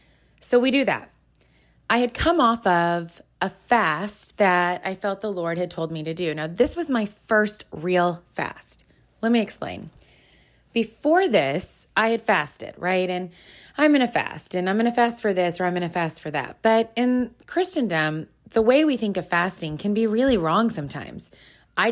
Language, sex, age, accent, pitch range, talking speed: English, female, 20-39, American, 170-225 Hz, 195 wpm